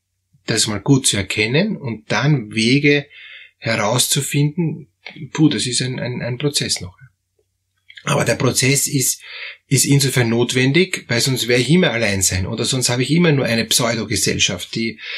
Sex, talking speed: male, 155 wpm